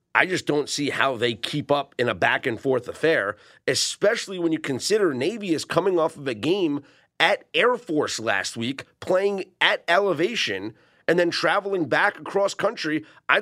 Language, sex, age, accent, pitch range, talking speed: English, male, 30-49, American, 150-220 Hz, 170 wpm